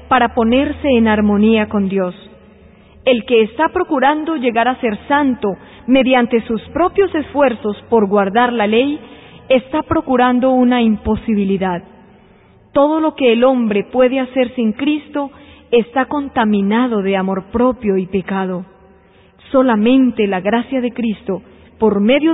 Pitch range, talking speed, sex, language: 210-275 Hz, 130 wpm, female, Spanish